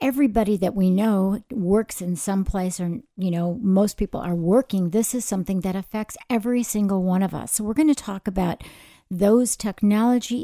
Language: English